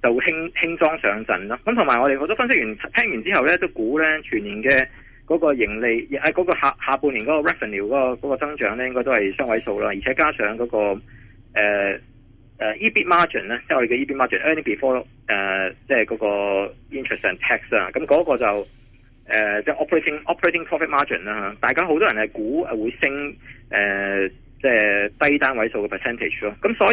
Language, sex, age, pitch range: Chinese, male, 20-39, 105-150 Hz